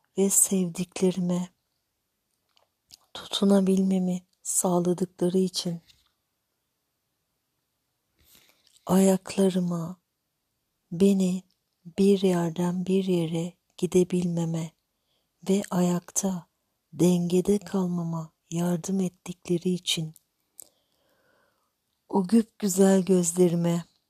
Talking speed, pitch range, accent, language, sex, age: 55 wpm, 175-190 Hz, native, Turkish, female, 60-79